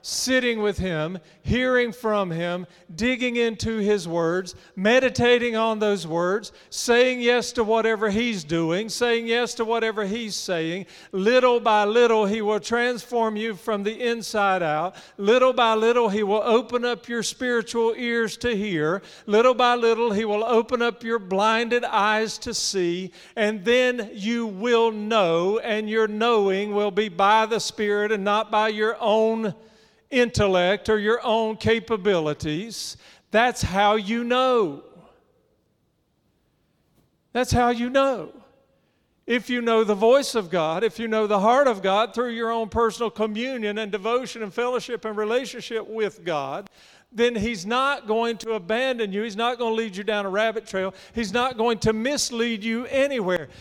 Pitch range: 210-235 Hz